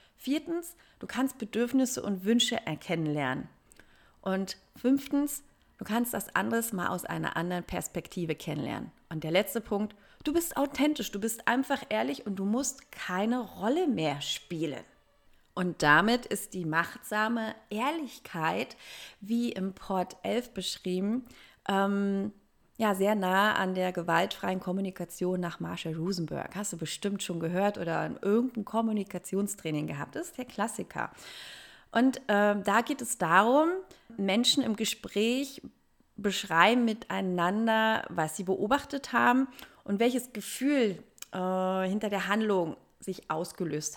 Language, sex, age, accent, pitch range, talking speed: German, female, 30-49, German, 185-240 Hz, 135 wpm